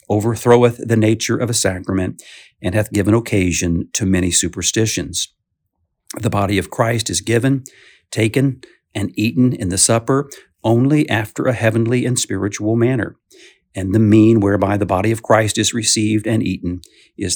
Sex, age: male, 50-69